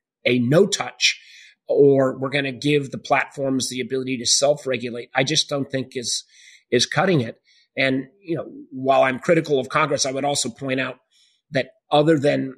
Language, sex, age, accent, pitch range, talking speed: English, male, 30-49, American, 130-155 Hz, 185 wpm